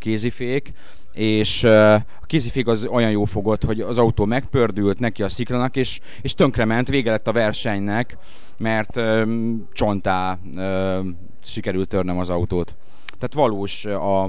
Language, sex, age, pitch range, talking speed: Hungarian, male, 30-49, 95-115 Hz, 145 wpm